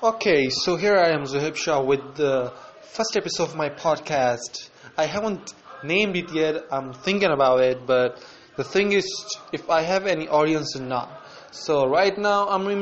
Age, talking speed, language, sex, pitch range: 20-39, 185 wpm, English, male, 145-195 Hz